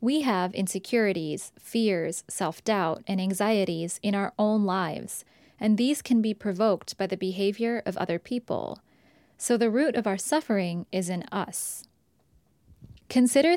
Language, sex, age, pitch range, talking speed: English, female, 20-39, 195-240 Hz, 140 wpm